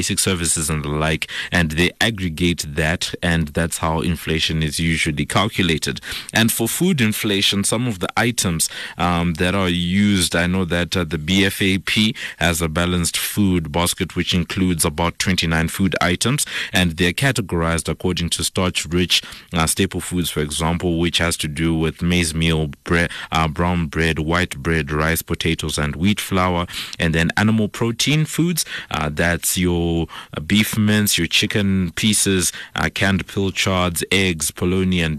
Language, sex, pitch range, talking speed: English, male, 80-95 Hz, 160 wpm